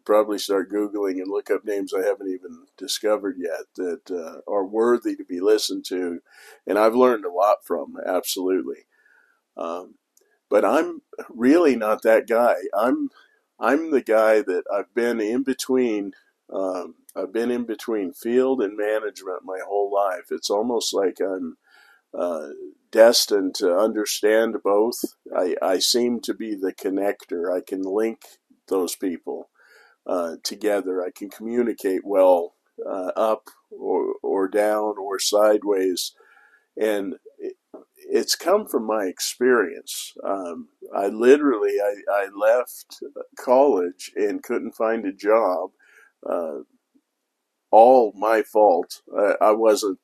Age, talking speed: 50-69, 135 wpm